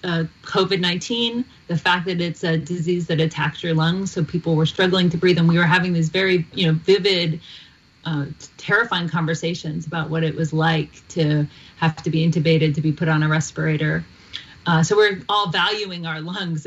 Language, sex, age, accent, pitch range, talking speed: English, female, 30-49, American, 160-180 Hz, 190 wpm